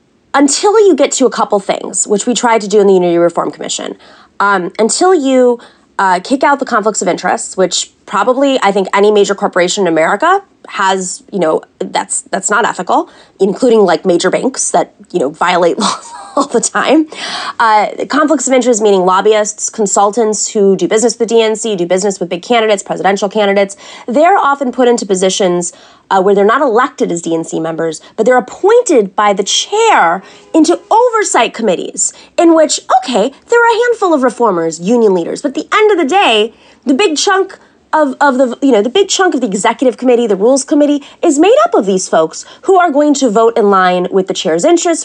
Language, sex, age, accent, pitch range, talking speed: English, female, 20-39, American, 195-285 Hz, 200 wpm